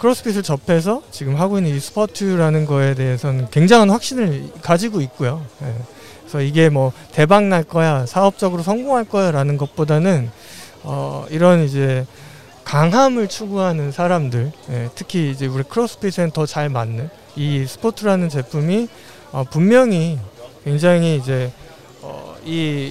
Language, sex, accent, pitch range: Korean, male, native, 135-200 Hz